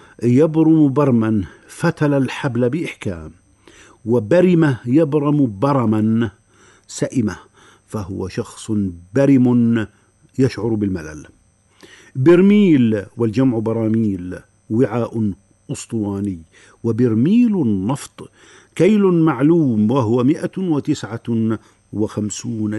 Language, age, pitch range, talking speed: Arabic, 50-69, 105-140 Hz, 70 wpm